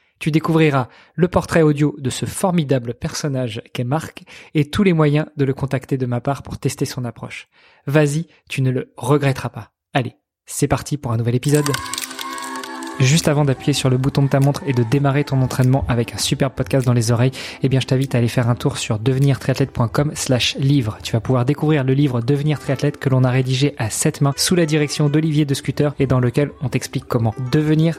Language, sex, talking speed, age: French, male, 215 wpm, 20-39